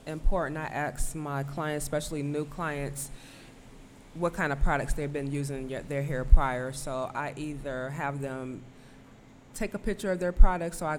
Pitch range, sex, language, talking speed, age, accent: 130-155 Hz, female, English, 170 wpm, 20-39, American